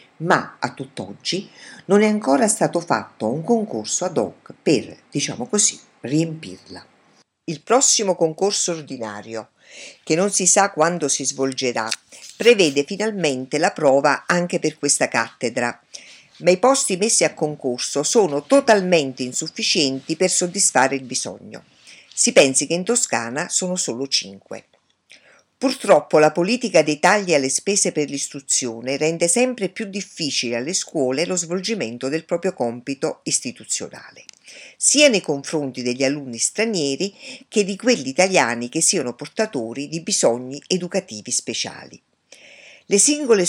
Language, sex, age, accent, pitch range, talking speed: Italian, female, 50-69, native, 140-205 Hz, 130 wpm